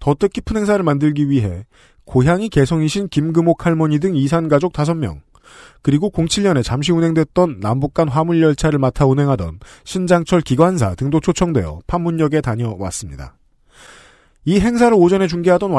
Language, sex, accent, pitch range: Korean, male, native, 130-185 Hz